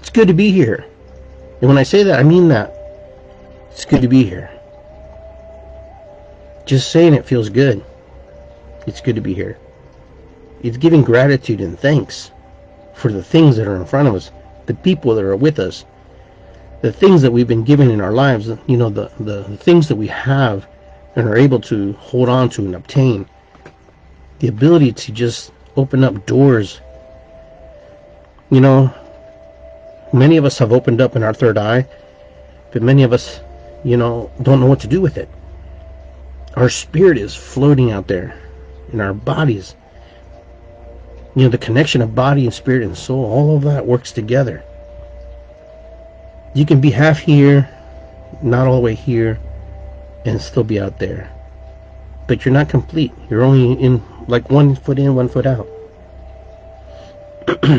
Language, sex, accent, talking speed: English, male, American, 165 wpm